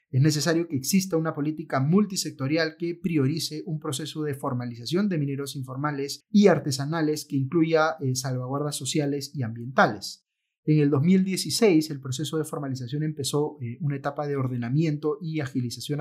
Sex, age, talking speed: male, 30-49, 140 wpm